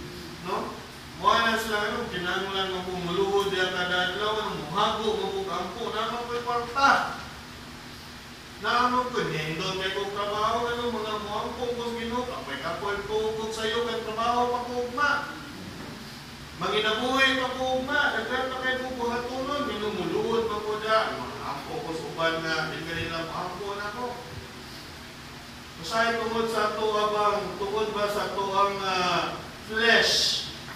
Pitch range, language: 175-225 Hz, English